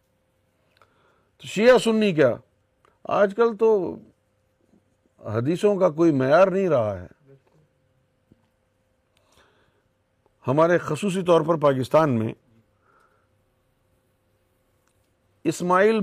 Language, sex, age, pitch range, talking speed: Urdu, male, 50-69, 130-185 Hz, 75 wpm